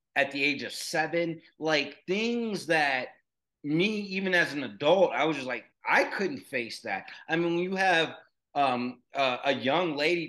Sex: male